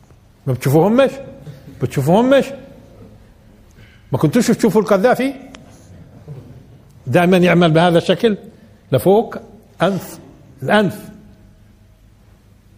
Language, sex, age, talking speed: Arabic, male, 60-79, 75 wpm